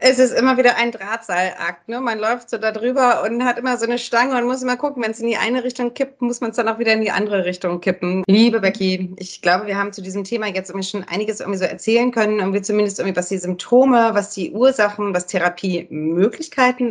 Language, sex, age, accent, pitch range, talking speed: German, female, 30-49, German, 175-220 Hz, 240 wpm